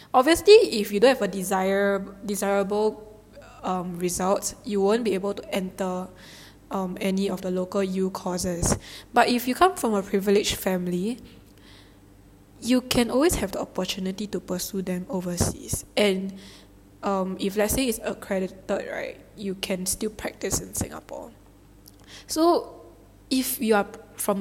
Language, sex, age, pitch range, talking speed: English, female, 10-29, 185-215 Hz, 145 wpm